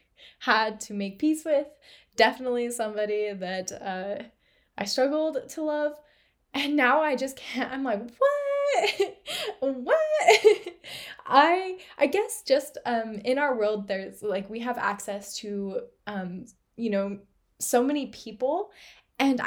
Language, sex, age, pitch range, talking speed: English, female, 10-29, 205-270 Hz, 135 wpm